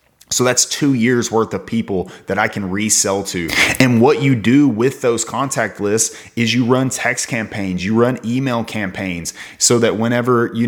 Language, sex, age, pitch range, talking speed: English, male, 30-49, 100-125 Hz, 185 wpm